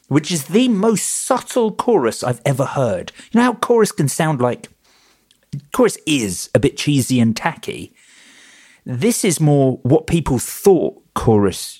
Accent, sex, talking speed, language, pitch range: British, male, 155 wpm, English, 110-145 Hz